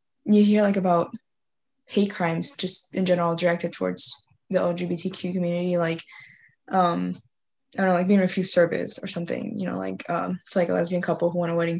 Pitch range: 165-200 Hz